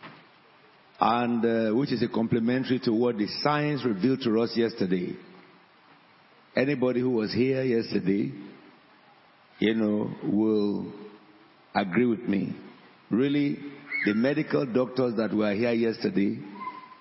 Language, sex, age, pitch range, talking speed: English, male, 60-79, 110-140 Hz, 115 wpm